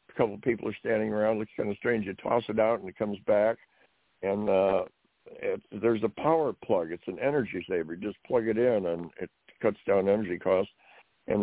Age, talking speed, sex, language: 60-79, 215 wpm, male, English